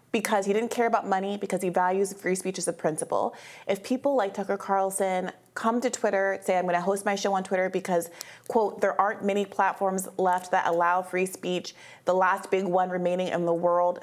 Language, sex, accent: English, female, American